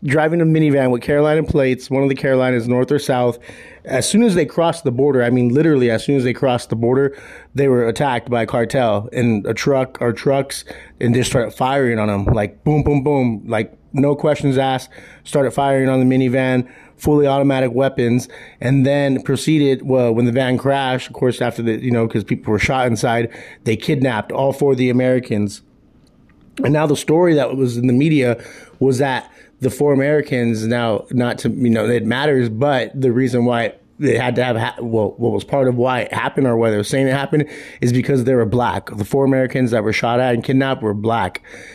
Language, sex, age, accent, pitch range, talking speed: English, male, 30-49, American, 120-140 Hz, 215 wpm